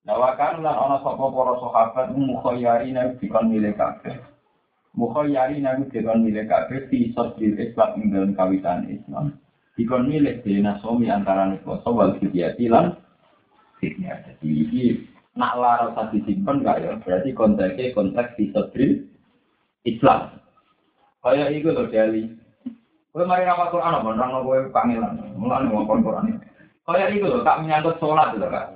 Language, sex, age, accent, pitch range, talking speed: Indonesian, male, 50-69, native, 115-175 Hz, 45 wpm